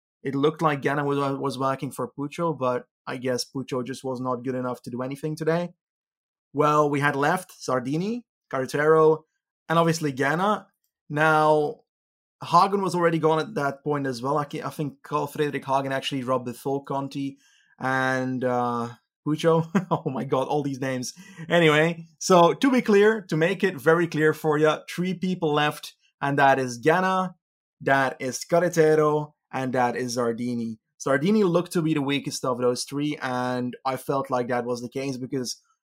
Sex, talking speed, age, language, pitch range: male, 180 wpm, 20-39, English, 135-160 Hz